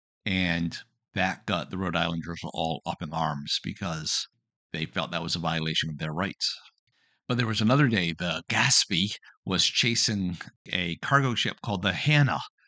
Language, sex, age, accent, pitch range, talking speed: English, male, 50-69, American, 95-115 Hz, 165 wpm